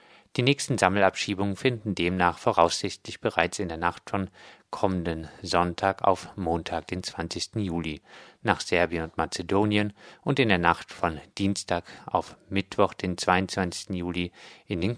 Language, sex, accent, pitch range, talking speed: German, male, German, 85-105 Hz, 140 wpm